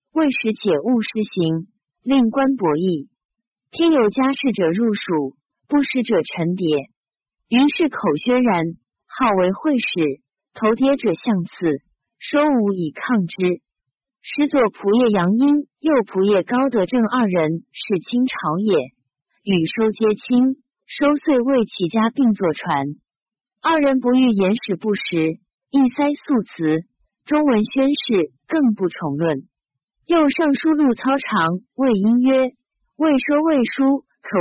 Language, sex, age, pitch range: Chinese, female, 50-69, 185-270 Hz